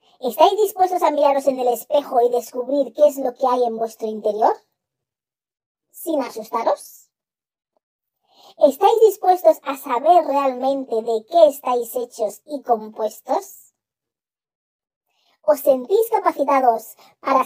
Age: 40-59